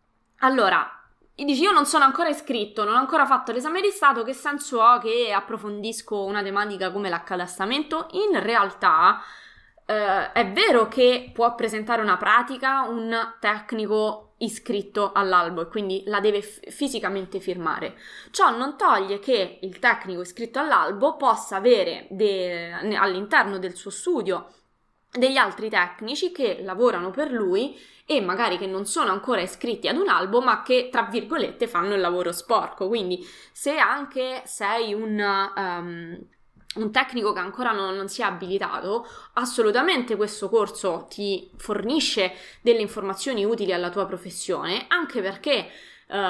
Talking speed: 145 wpm